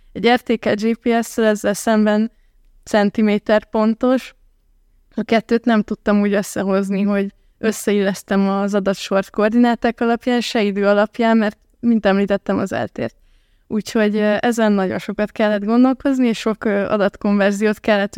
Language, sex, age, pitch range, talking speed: Hungarian, female, 20-39, 205-225 Hz, 120 wpm